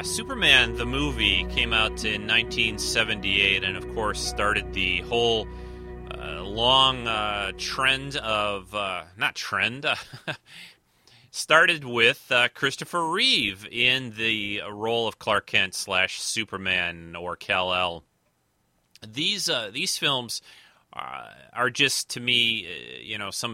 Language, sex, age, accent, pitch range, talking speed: English, male, 30-49, American, 95-120 Hz, 120 wpm